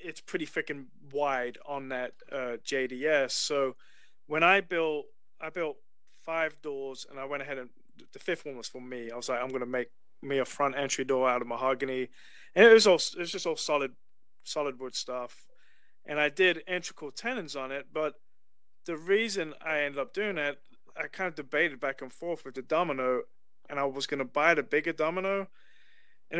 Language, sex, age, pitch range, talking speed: English, male, 30-49, 135-170 Hz, 205 wpm